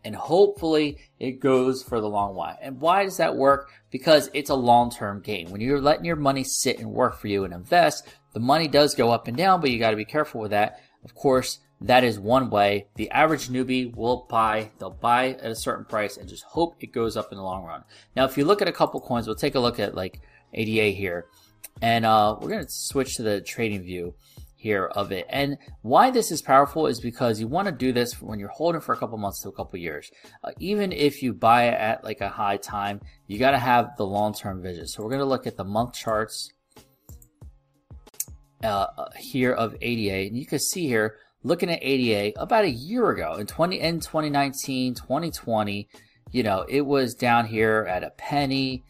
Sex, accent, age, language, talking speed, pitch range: male, American, 20-39, English, 220 wpm, 105-140 Hz